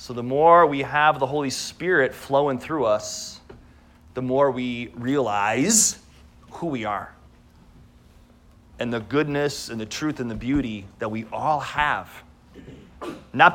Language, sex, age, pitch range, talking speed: English, male, 30-49, 120-160 Hz, 140 wpm